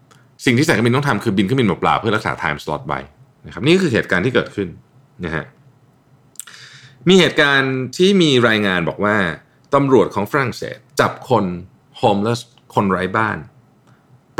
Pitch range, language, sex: 105-135 Hz, Thai, male